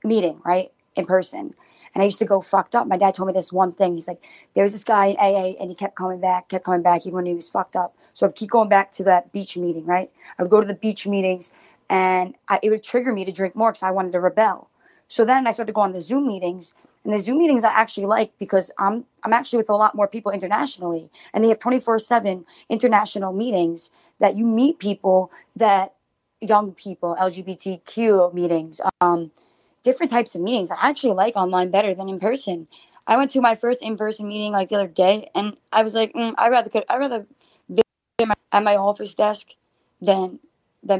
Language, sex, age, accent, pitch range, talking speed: English, female, 20-39, American, 185-225 Hz, 220 wpm